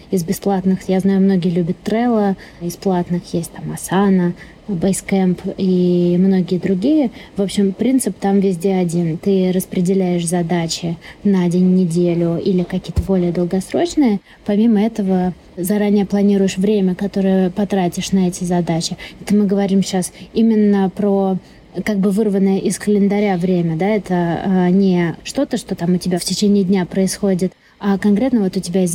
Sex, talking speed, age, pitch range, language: female, 150 wpm, 20-39, 180-205 Hz, Russian